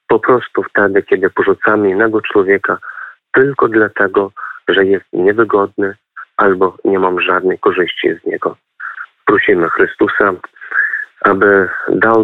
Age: 30-49